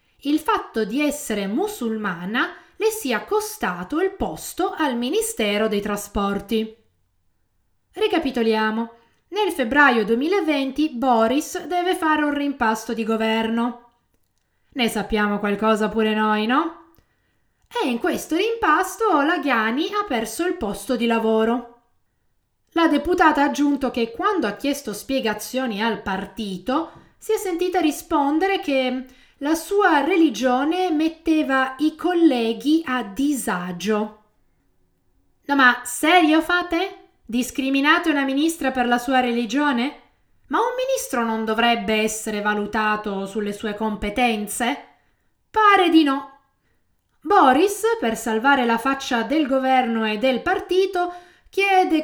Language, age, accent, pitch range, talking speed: Italian, 20-39, native, 220-325 Hz, 115 wpm